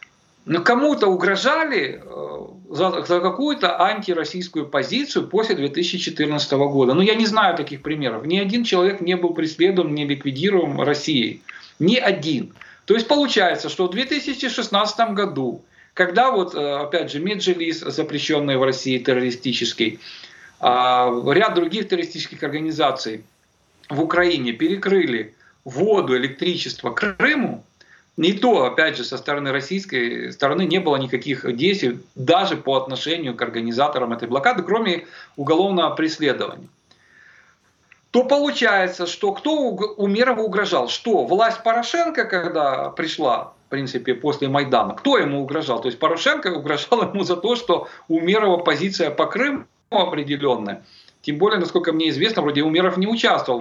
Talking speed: 130 wpm